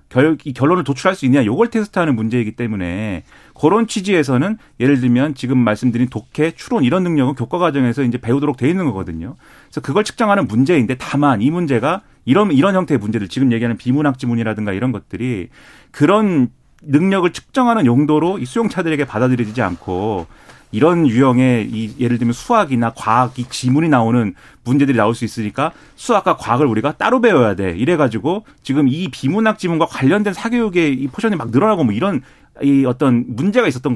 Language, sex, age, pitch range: Korean, male, 40-59, 120-180 Hz